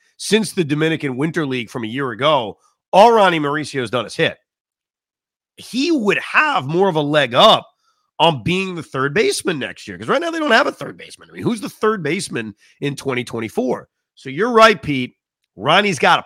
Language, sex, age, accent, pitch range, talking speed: English, male, 40-59, American, 125-185 Hz, 205 wpm